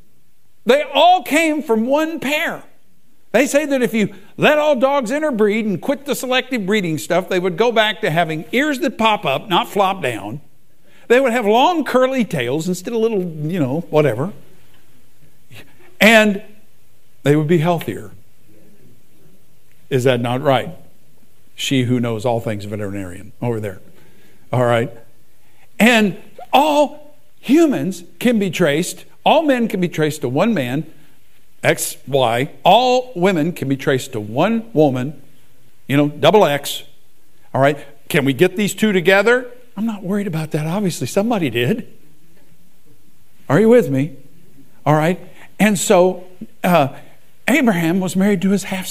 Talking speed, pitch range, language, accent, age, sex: 150 wpm, 140-230 Hz, English, American, 60-79, male